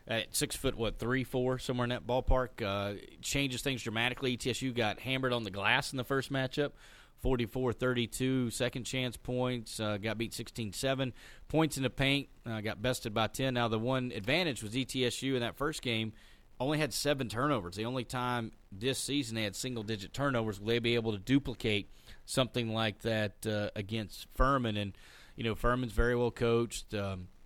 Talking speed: 180 wpm